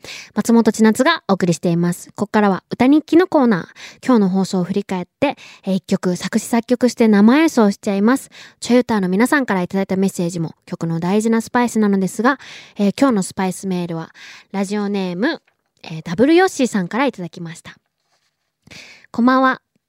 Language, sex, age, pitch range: Japanese, female, 20-39, 185-250 Hz